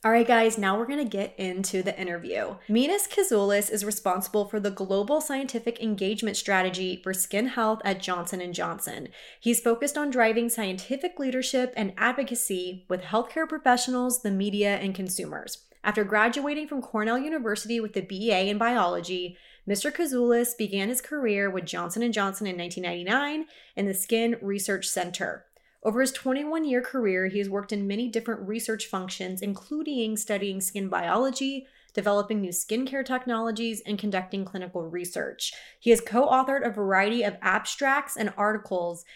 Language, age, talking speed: English, 20-39, 155 wpm